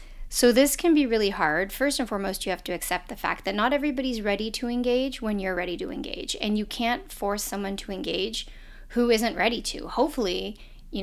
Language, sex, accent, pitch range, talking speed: English, female, American, 185-245 Hz, 210 wpm